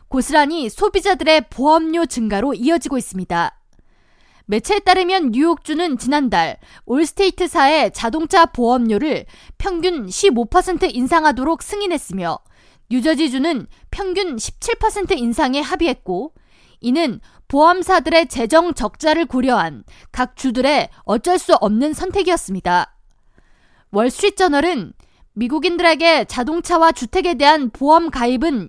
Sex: female